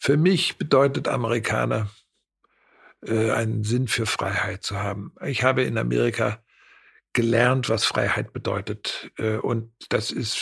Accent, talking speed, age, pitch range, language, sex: German, 125 wpm, 60-79, 115-140 Hz, German, male